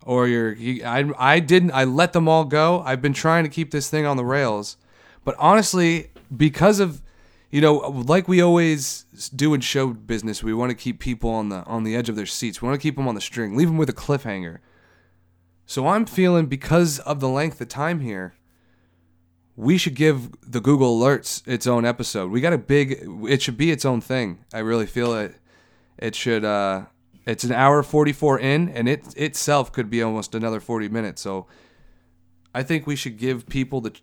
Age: 30-49